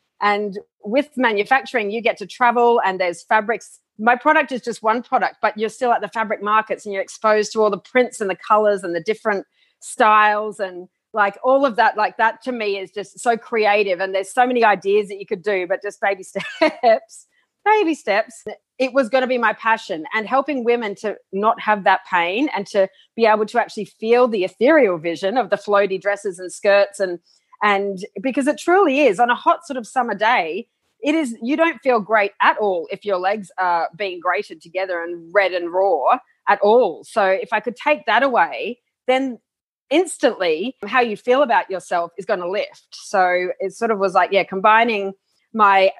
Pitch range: 195-250 Hz